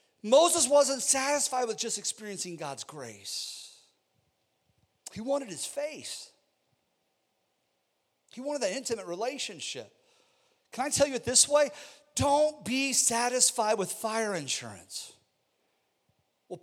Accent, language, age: American, English, 40-59